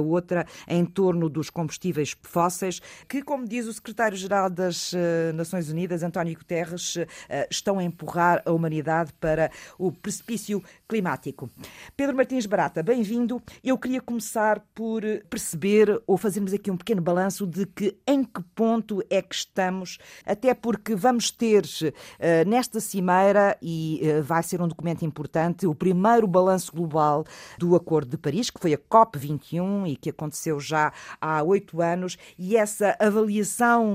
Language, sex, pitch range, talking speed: Portuguese, female, 165-215 Hz, 145 wpm